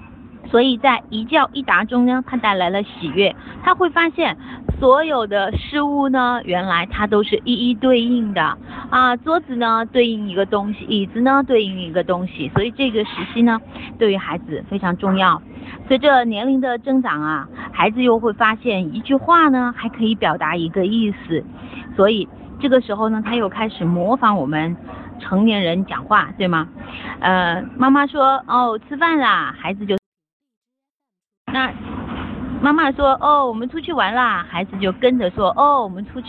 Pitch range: 195-260 Hz